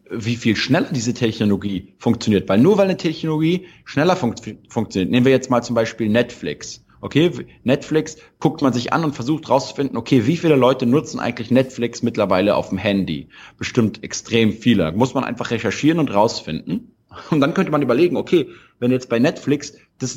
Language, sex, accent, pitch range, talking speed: German, male, German, 115-140 Hz, 180 wpm